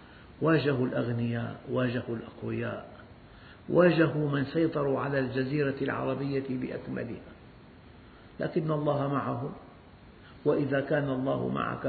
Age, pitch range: 50-69, 120-150 Hz